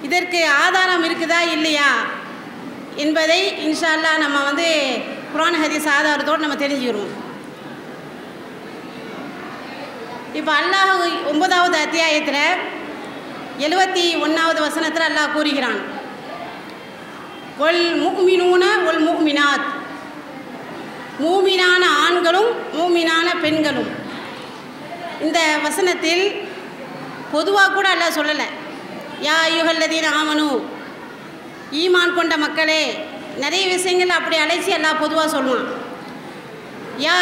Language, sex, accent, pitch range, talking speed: English, female, Indian, 295-355 Hz, 65 wpm